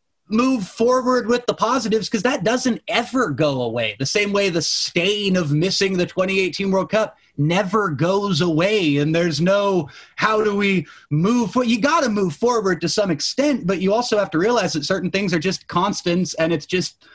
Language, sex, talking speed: English, male, 200 wpm